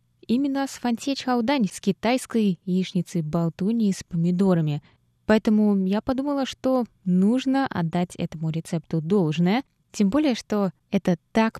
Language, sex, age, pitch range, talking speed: Russian, female, 20-39, 155-205 Hz, 120 wpm